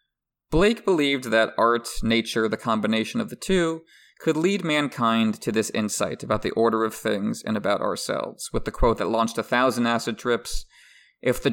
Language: English